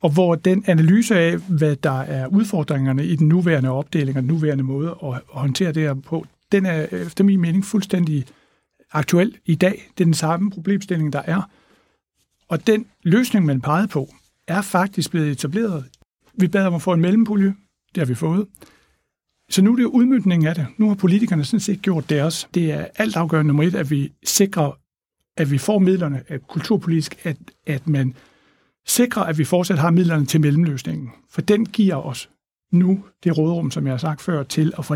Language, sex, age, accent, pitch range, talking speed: Danish, male, 60-79, native, 150-185 Hz, 195 wpm